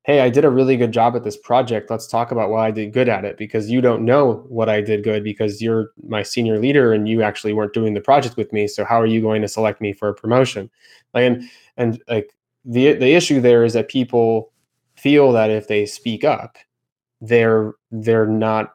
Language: English